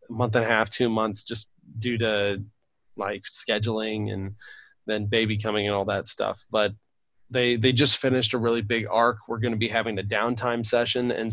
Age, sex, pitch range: 20-39, male, 110-130 Hz